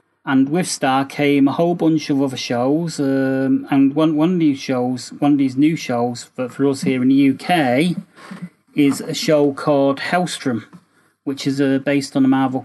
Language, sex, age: English, male, 30-49